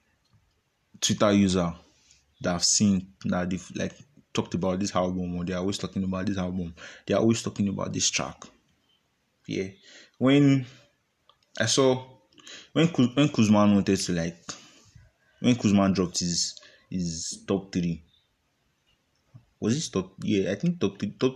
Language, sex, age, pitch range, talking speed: English, male, 20-39, 90-115 Hz, 145 wpm